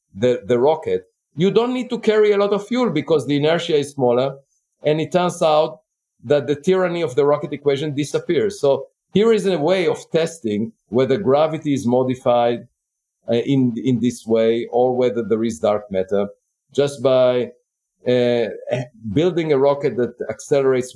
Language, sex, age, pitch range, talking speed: Bulgarian, male, 50-69, 125-170 Hz, 170 wpm